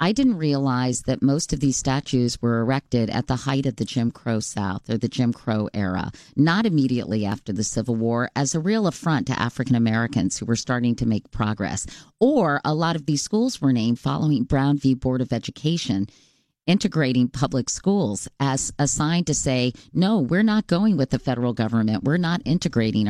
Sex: female